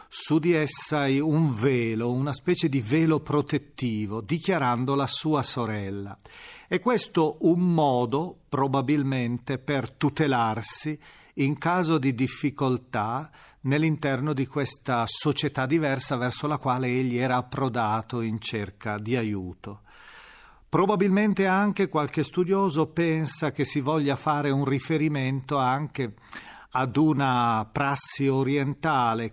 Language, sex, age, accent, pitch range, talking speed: Italian, male, 40-59, native, 120-155 Hz, 115 wpm